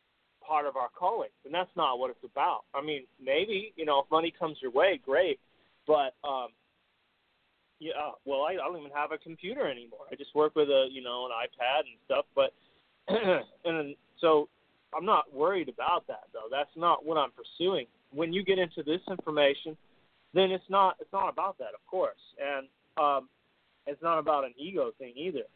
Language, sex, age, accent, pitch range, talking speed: English, male, 30-49, American, 145-190 Hz, 195 wpm